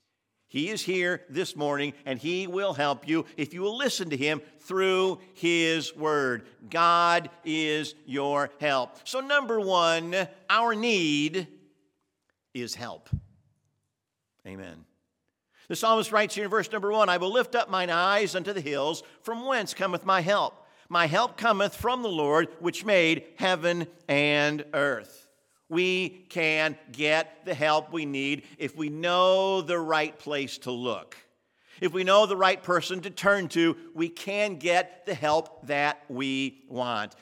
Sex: male